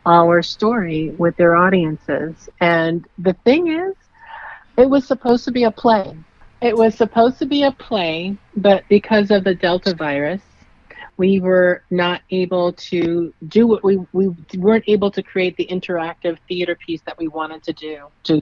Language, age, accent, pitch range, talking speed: English, 40-59, American, 160-190 Hz, 170 wpm